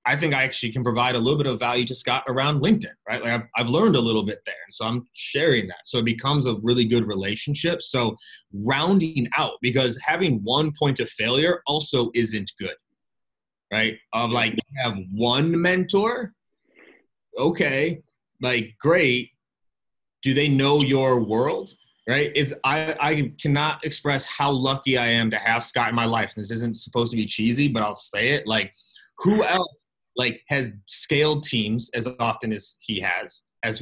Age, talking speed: 30-49, 185 wpm